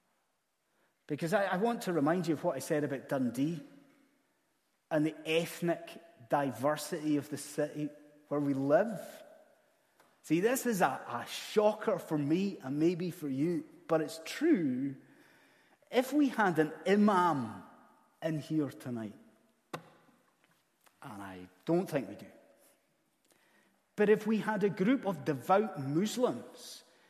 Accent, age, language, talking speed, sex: British, 30-49, English, 135 wpm, male